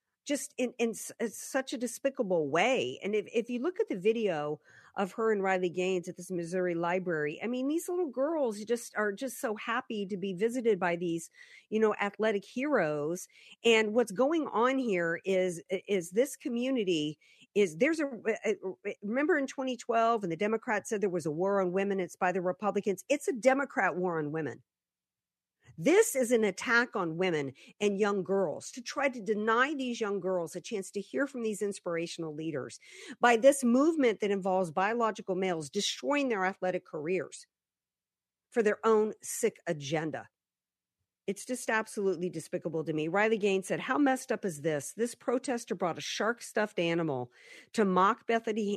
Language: English